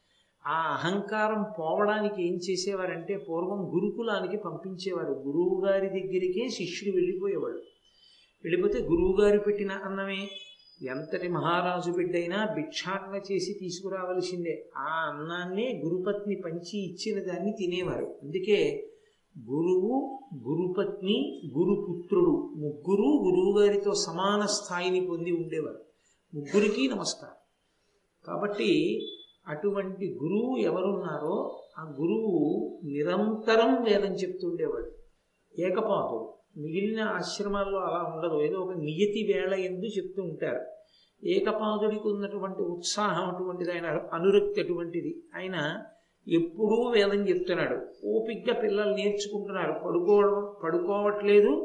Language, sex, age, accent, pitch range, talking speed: Telugu, male, 50-69, native, 180-215 Hz, 90 wpm